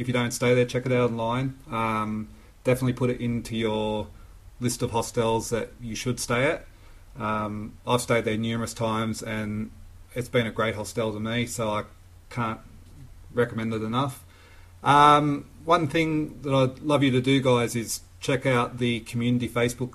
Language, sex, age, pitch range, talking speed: English, male, 30-49, 110-125 Hz, 175 wpm